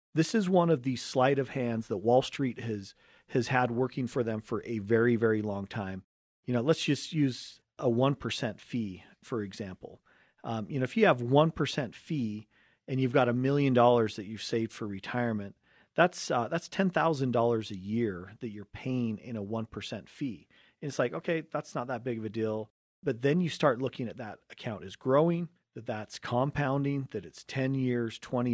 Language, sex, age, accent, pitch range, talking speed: English, male, 40-59, American, 110-135 Hz, 200 wpm